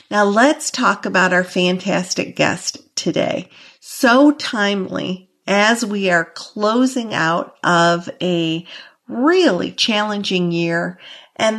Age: 50-69